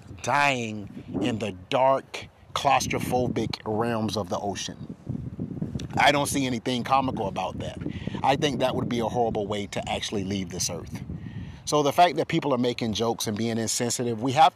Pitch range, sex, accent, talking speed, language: 115-160 Hz, male, American, 175 wpm, English